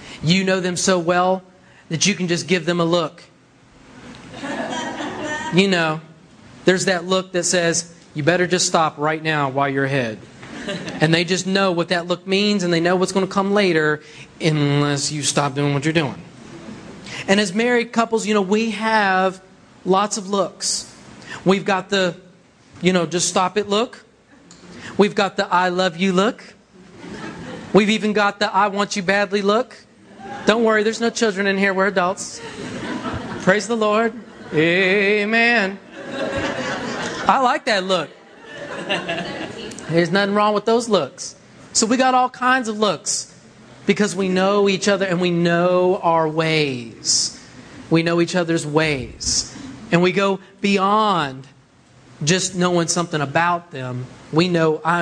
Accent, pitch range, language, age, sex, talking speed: American, 160-205 Hz, English, 30-49, male, 160 wpm